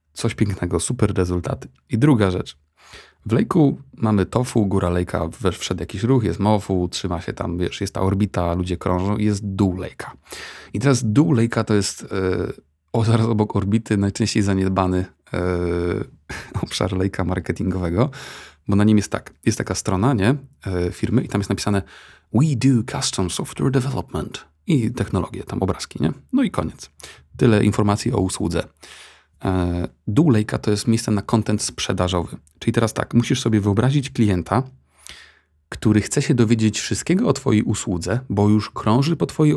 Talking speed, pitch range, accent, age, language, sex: 160 wpm, 90-120 Hz, native, 30-49, Polish, male